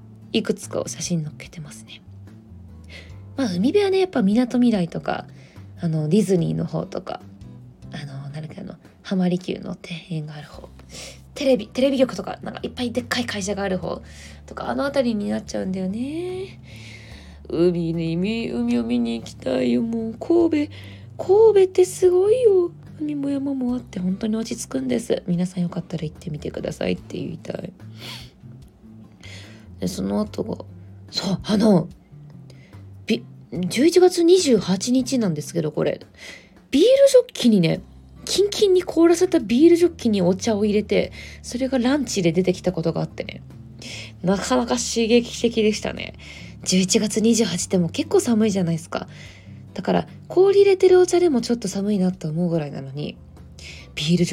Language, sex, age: Japanese, female, 20-39